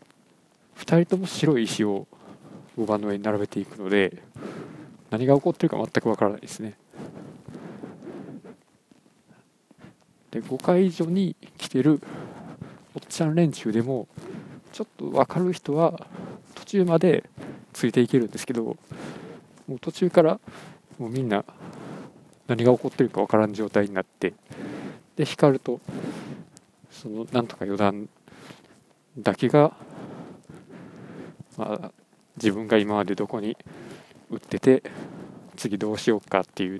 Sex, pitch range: male, 105-150 Hz